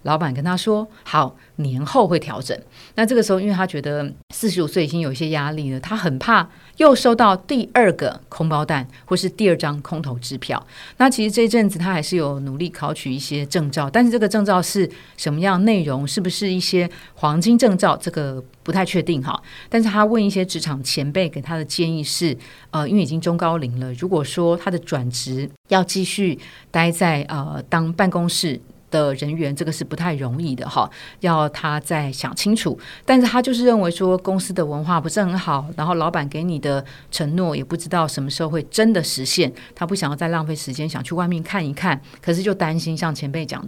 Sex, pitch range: female, 145-185 Hz